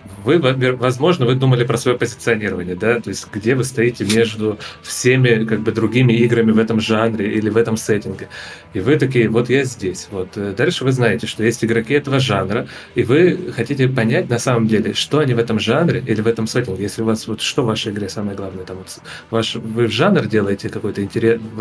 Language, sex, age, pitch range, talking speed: Russian, male, 30-49, 105-125 Hz, 205 wpm